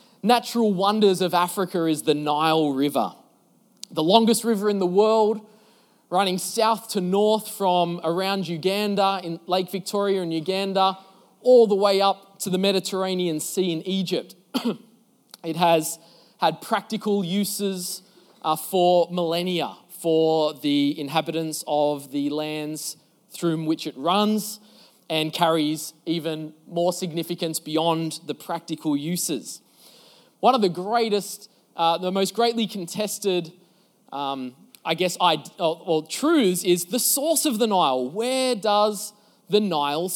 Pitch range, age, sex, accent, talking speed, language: 170-210 Hz, 20-39, male, Australian, 135 wpm, English